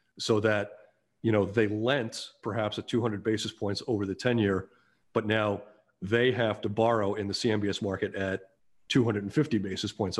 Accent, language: American, English